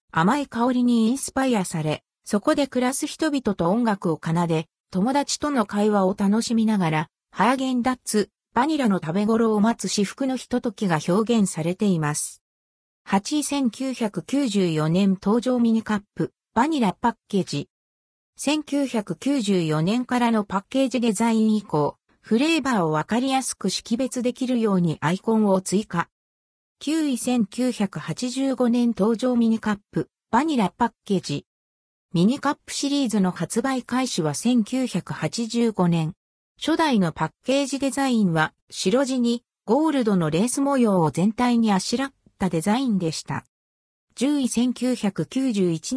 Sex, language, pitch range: female, Japanese, 180-255 Hz